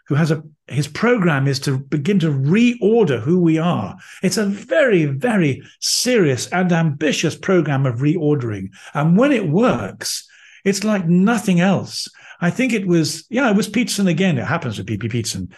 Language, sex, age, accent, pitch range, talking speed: English, male, 50-69, British, 125-175 Hz, 175 wpm